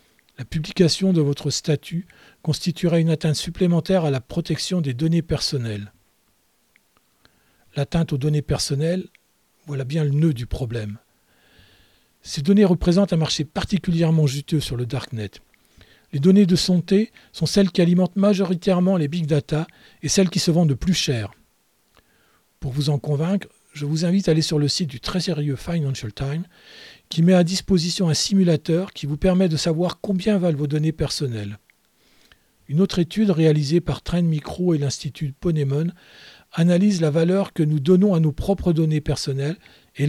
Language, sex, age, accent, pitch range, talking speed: French, male, 40-59, French, 145-180 Hz, 165 wpm